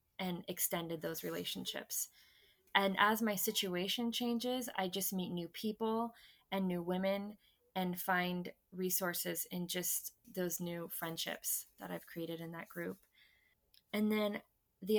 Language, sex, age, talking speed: English, female, 20-39, 135 wpm